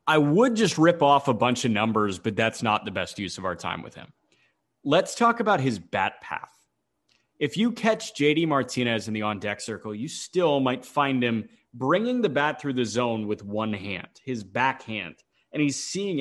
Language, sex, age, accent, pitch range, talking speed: English, male, 30-49, American, 120-170 Hz, 200 wpm